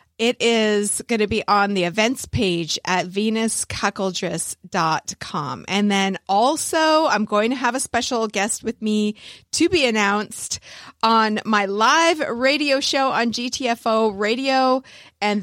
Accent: American